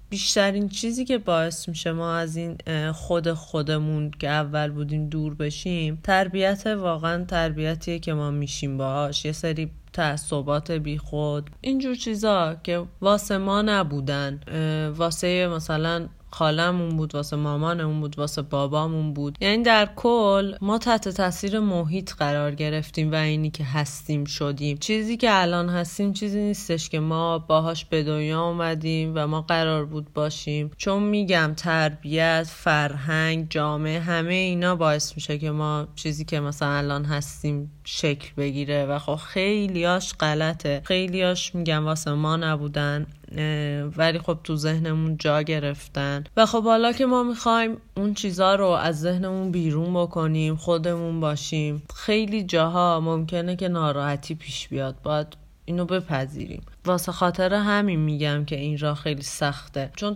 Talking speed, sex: 145 wpm, female